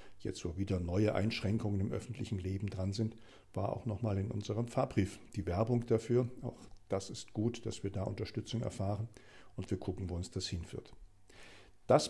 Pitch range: 95-125 Hz